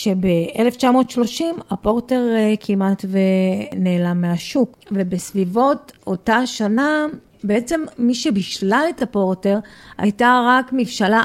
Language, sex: Hebrew, female